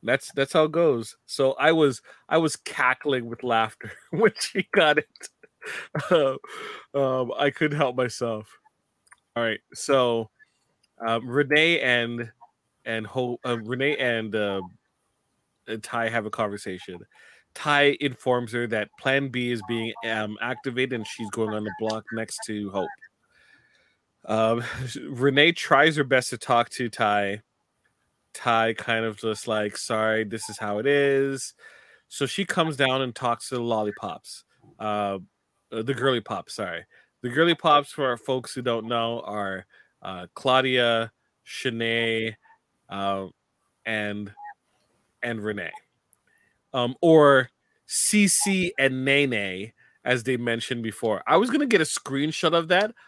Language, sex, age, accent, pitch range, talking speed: English, male, 30-49, American, 110-140 Hz, 145 wpm